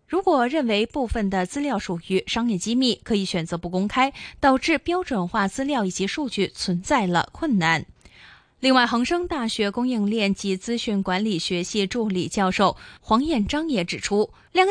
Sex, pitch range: female, 195-260 Hz